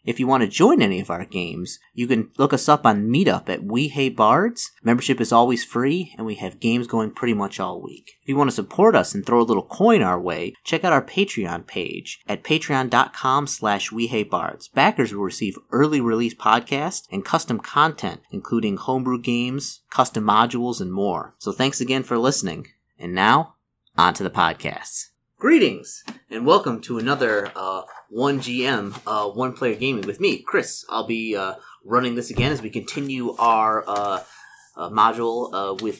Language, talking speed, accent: English, 185 wpm, American